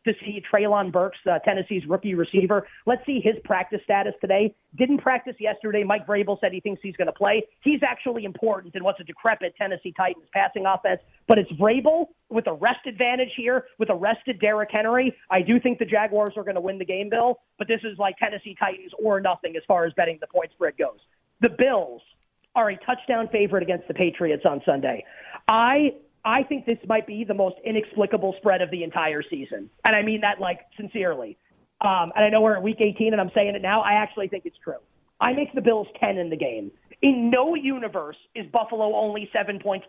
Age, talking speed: 30-49, 215 wpm